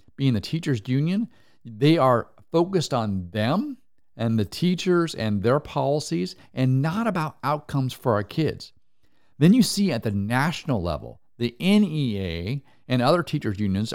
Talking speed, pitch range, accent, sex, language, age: 150 wpm, 110-150 Hz, American, male, English, 50-69